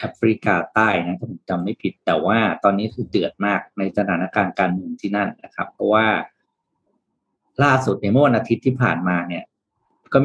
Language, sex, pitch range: Thai, male, 100-125 Hz